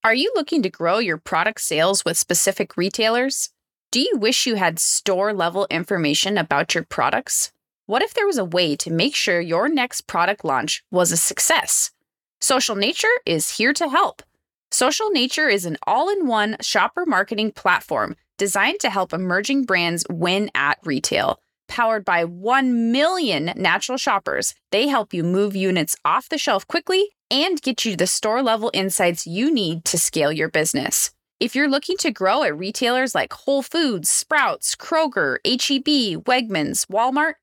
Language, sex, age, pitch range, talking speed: English, female, 20-39, 190-285 Hz, 160 wpm